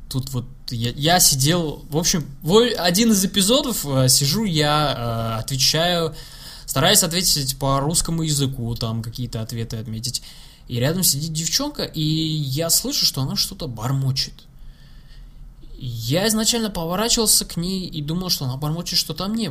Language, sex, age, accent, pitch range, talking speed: Russian, male, 20-39, native, 130-175 Hz, 140 wpm